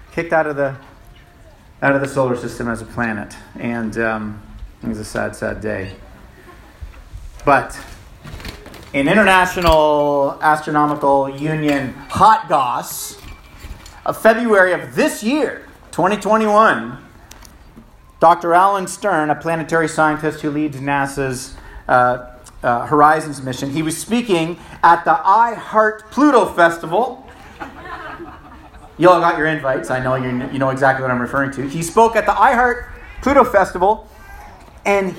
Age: 40-59